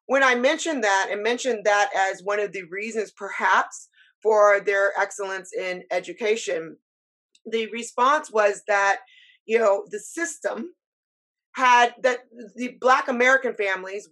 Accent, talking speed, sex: American, 135 wpm, female